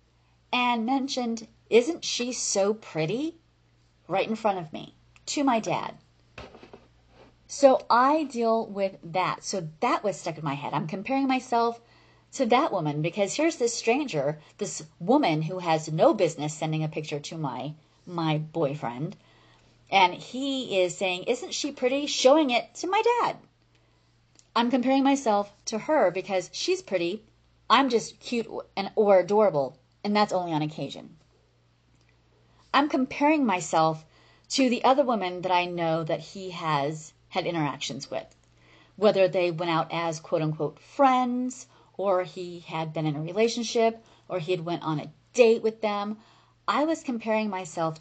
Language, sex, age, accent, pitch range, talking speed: English, female, 30-49, American, 150-230 Hz, 155 wpm